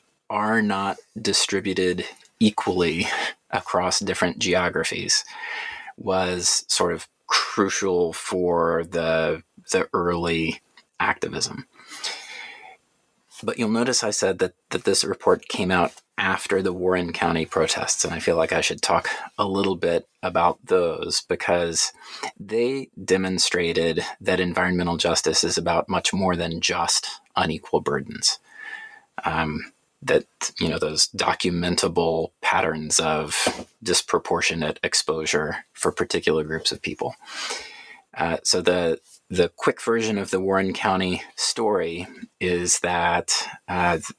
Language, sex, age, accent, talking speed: English, male, 30-49, American, 120 wpm